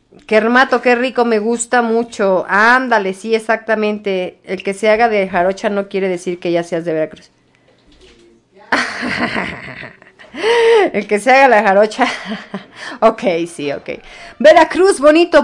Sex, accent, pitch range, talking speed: female, Mexican, 180-240 Hz, 130 wpm